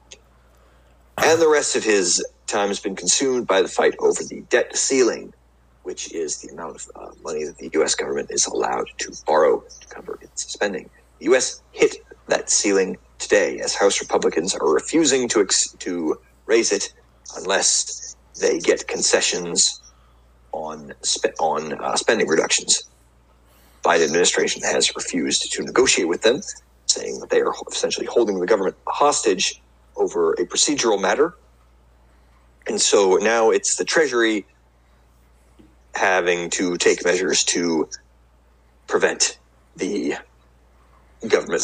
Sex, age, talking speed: male, 40-59, 140 wpm